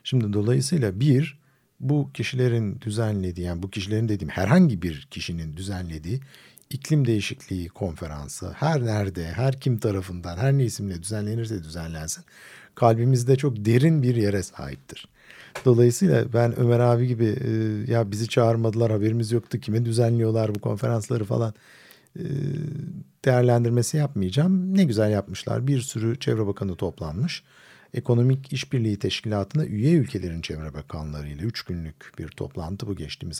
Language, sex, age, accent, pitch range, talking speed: Turkish, male, 50-69, native, 95-130 Hz, 130 wpm